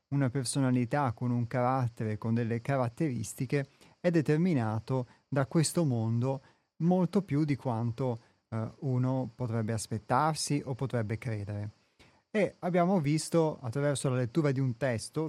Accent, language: native, Italian